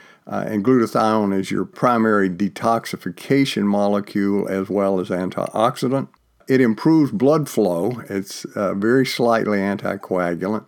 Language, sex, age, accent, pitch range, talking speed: English, male, 50-69, American, 95-115 Hz, 120 wpm